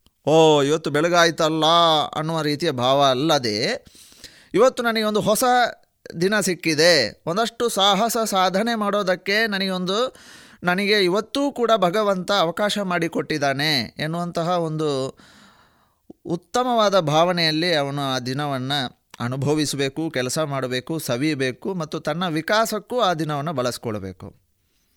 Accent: native